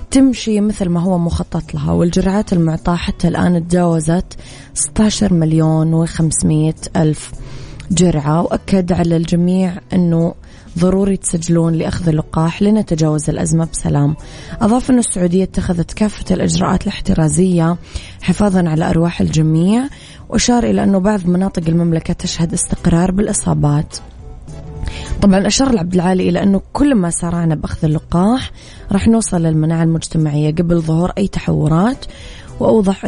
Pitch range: 160-190 Hz